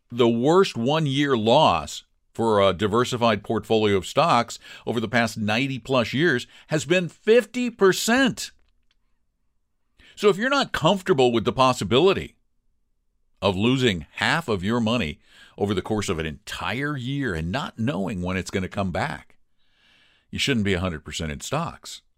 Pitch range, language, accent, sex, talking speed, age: 95-155 Hz, English, American, male, 145 wpm, 50-69